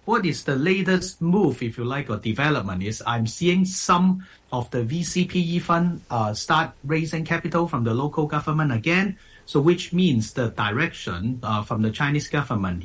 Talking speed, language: 175 wpm, English